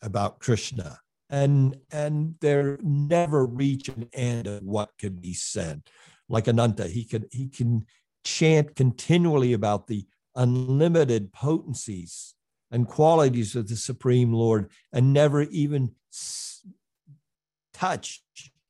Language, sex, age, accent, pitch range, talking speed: English, male, 50-69, American, 110-145 Hz, 115 wpm